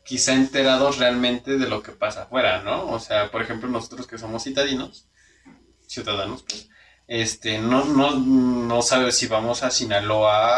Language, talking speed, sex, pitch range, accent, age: Spanish, 160 wpm, male, 110-135 Hz, Mexican, 20-39